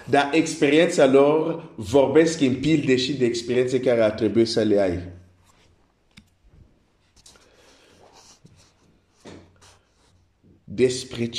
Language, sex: Romanian, male